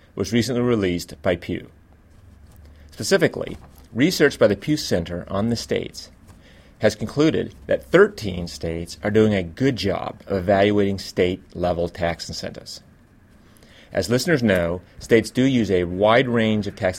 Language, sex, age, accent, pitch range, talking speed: English, male, 30-49, American, 90-120 Hz, 140 wpm